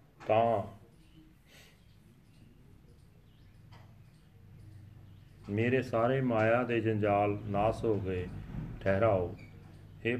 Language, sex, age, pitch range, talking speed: Punjabi, male, 40-59, 100-115 Hz, 65 wpm